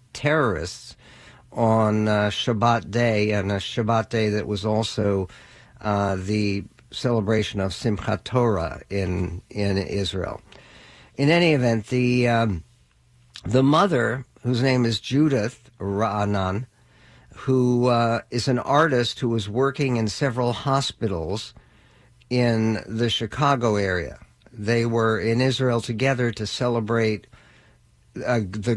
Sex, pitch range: male, 105-125 Hz